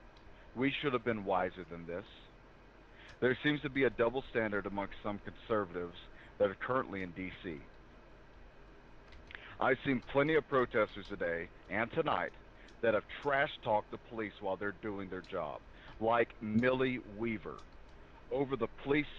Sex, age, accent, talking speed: male, 40-59, American, 145 wpm